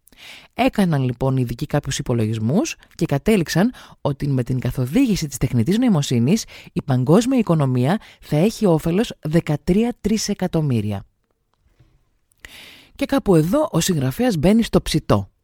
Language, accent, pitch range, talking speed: Greek, native, 130-200 Hz, 115 wpm